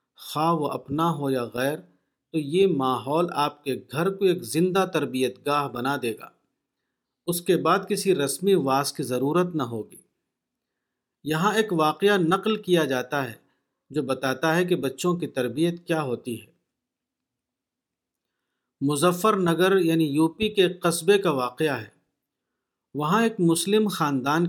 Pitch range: 135-175 Hz